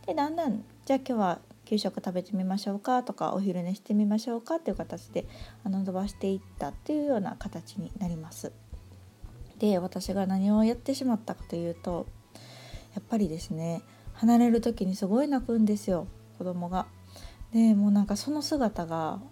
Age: 20-39